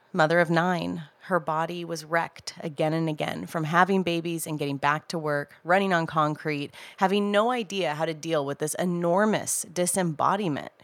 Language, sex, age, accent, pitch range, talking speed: English, female, 30-49, American, 155-195 Hz, 170 wpm